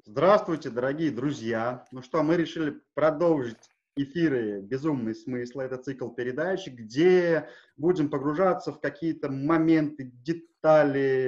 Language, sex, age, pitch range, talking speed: Russian, male, 30-49, 140-170 Hz, 115 wpm